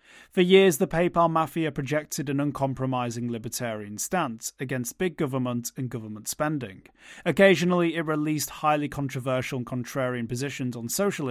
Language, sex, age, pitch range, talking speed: English, male, 30-49, 115-145 Hz, 140 wpm